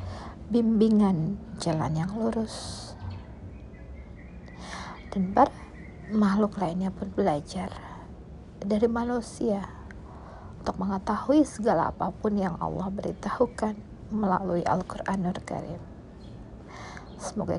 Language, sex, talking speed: Indonesian, female, 80 wpm